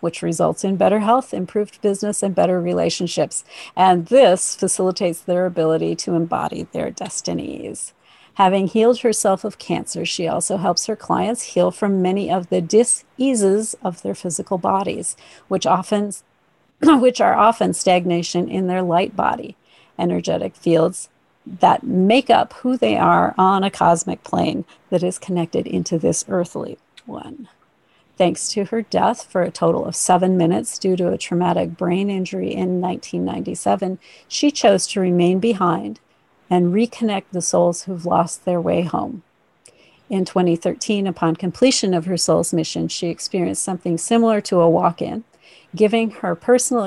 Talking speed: 150 wpm